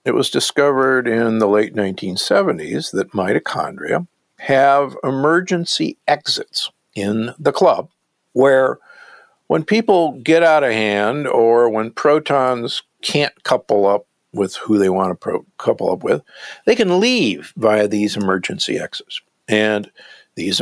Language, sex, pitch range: English, male, 100-145 Hz